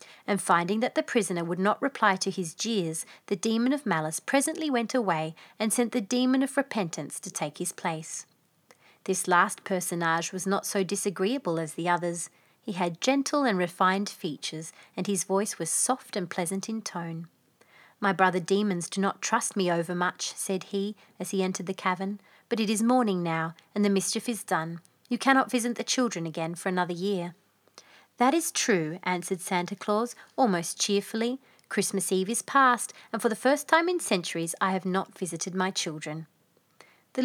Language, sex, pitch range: English, female, 175-230 Hz